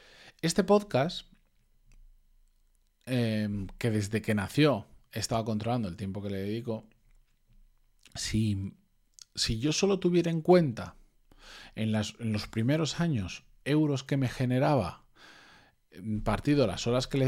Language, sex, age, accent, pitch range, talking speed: Spanish, male, 40-59, Spanish, 105-145 Hz, 130 wpm